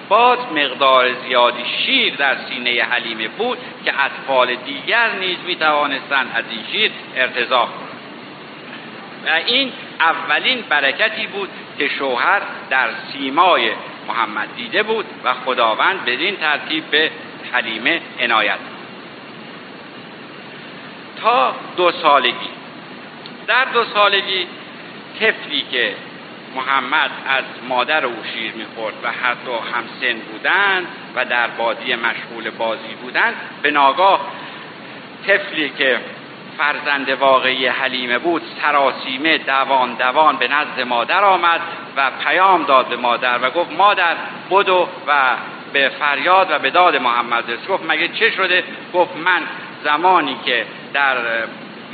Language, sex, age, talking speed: Persian, male, 60-79, 120 wpm